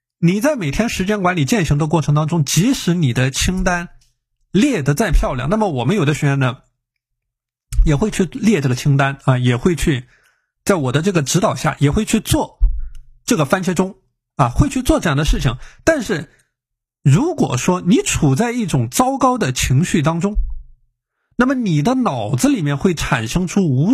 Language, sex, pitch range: Chinese, male, 130-190 Hz